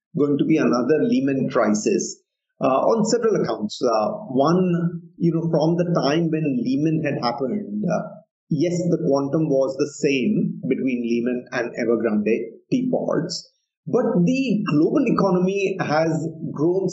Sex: male